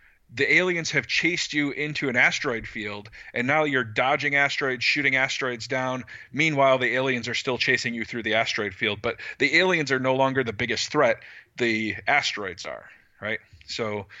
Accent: American